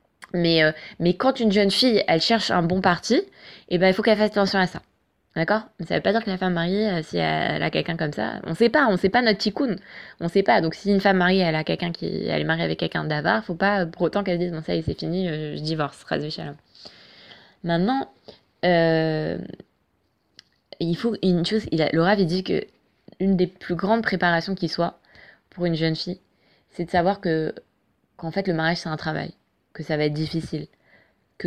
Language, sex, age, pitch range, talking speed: French, female, 20-39, 165-210 Hz, 230 wpm